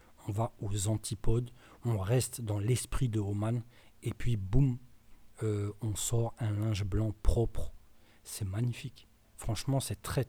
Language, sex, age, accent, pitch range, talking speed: French, male, 40-59, French, 105-120 Hz, 145 wpm